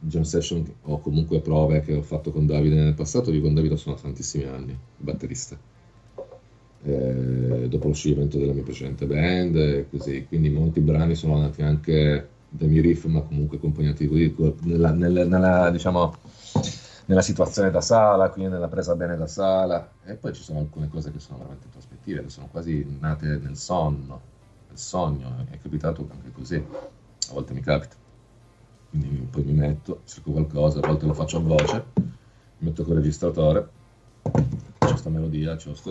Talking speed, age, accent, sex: 160 wpm, 40-59, native, male